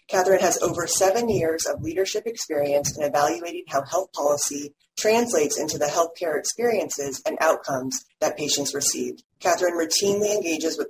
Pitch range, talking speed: 145-185 Hz, 150 wpm